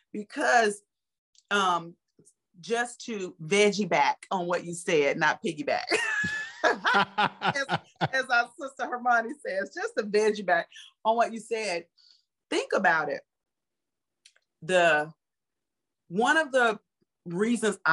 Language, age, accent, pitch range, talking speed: English, 40-59, American, 160-220 Hz, 115 wpm